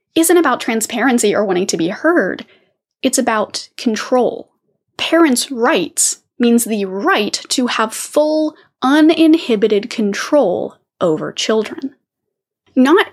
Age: 10-29